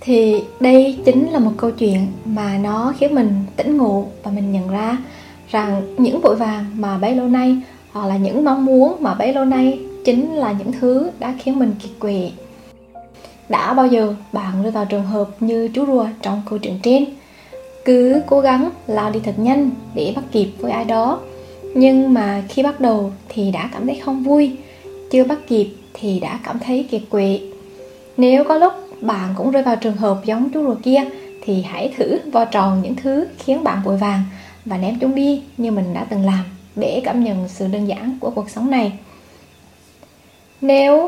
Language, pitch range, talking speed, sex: Vietnamese, 205-265 Hz, 195 wpm, female